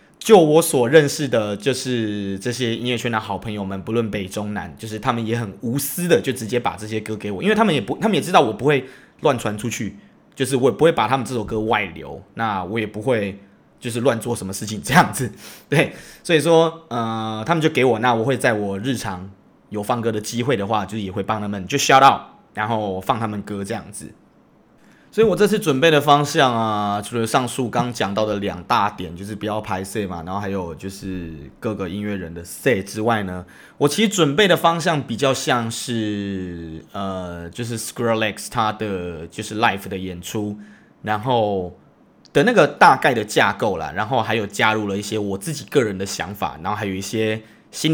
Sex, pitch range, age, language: male, 100-125 Hz, 20-39, Chinese